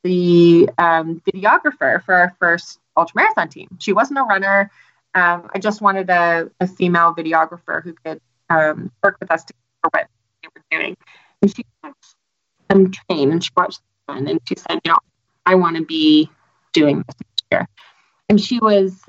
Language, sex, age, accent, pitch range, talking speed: English, female, 30-49, American, 175-250 Hz, 180 wpm